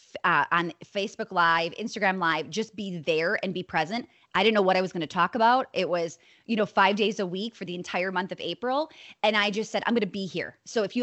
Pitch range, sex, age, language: 185-235 Hz, female, 20-39, English